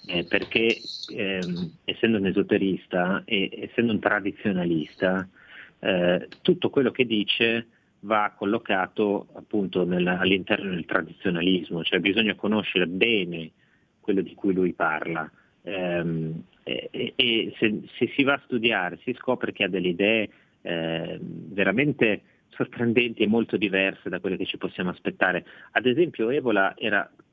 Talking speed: 140 wpm